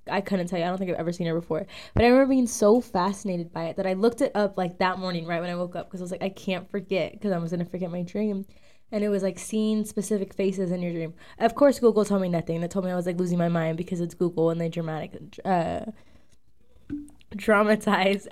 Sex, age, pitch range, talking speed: female, 10-29, 180-225 Hz, 260 wpm